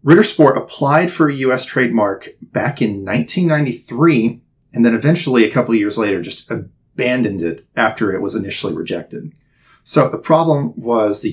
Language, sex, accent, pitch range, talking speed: English, male, American, 115-155 Hz, 155 wpm